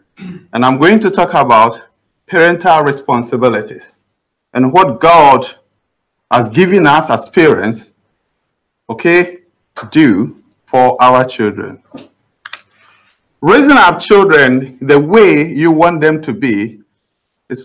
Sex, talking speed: male, 110 wpm